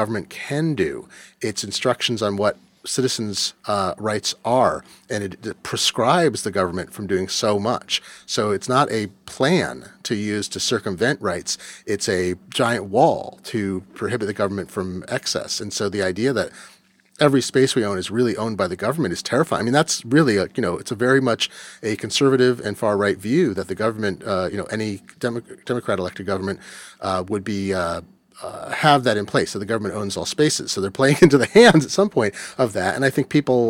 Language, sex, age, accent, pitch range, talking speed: English, male, 30-49, American, 100-125 Hz, 200 wpm